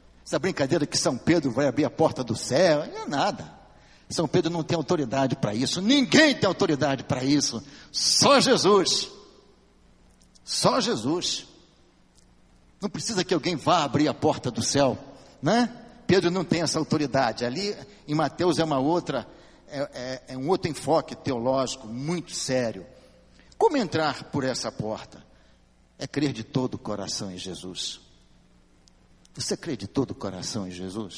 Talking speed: 150 wpm